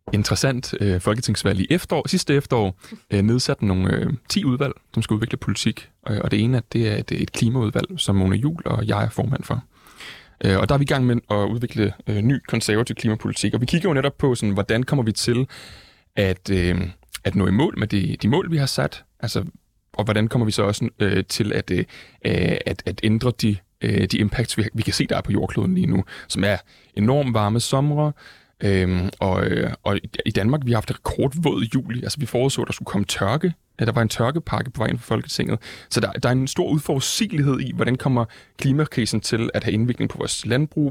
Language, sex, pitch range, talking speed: Danish, male, 105-130 Hz, 210 wpm